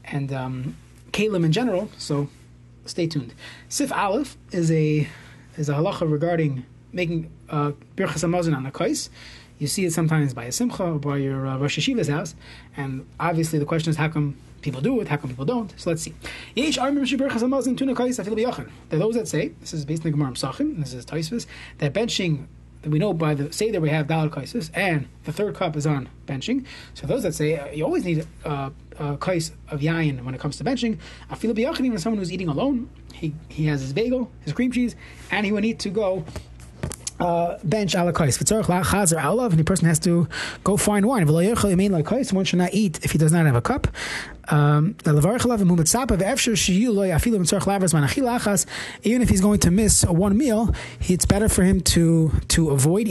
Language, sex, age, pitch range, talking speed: English, male, 20-39, 145-200 Hz, 190 wpm